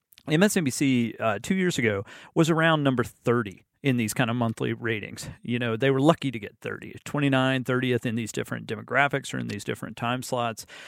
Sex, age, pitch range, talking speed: male, 40-59, 115-140 Hz, 195 wpm